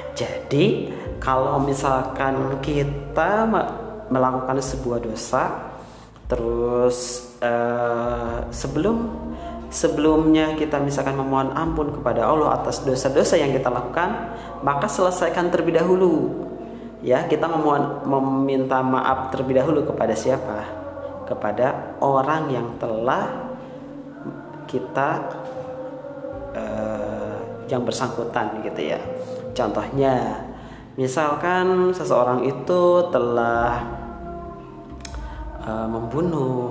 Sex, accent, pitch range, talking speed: male, native, 120-160 Hz, 85 wpm